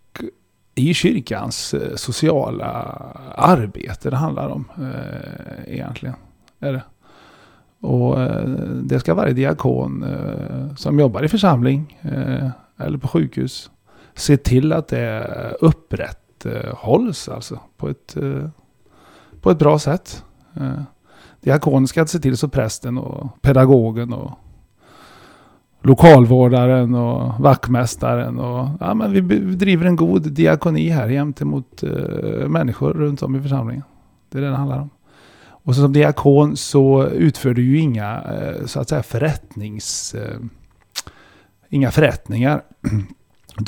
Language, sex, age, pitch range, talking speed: Swedish, male, 30-49, 115-145 Hz, 130 wpm